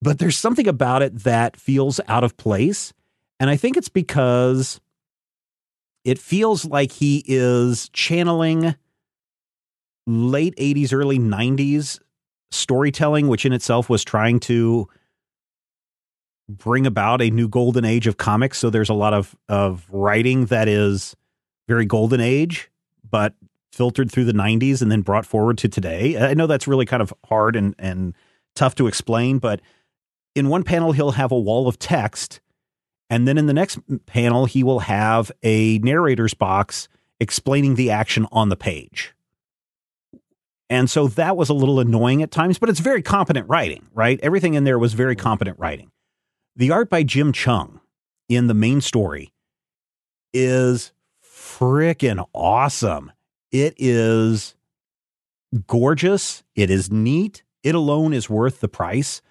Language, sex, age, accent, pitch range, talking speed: English, male, 30-49, American, 110-140 Hz, 150 wpm